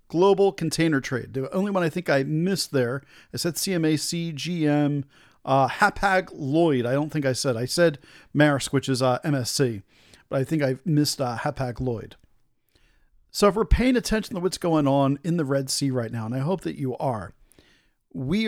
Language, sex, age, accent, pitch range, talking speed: English, male, 40-59, American, 135-170 Hz, 200 wpm